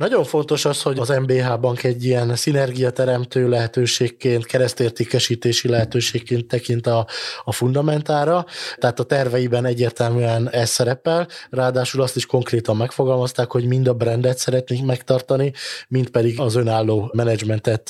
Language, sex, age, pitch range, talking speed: Hungarian, male, 20-39, 115-130 Hz, 135 wpm